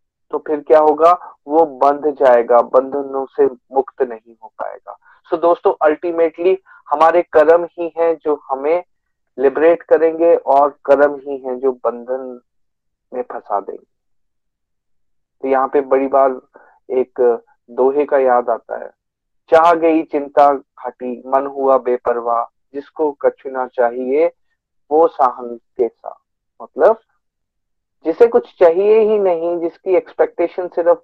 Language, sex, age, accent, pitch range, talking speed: Hindi, male, 30-49, native, 135-185 Hz, 130 wpm